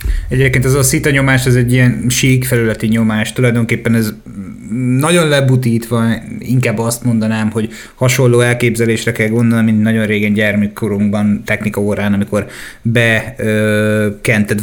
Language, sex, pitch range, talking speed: Hungarian, male, 110-120 Hz, 125 wpm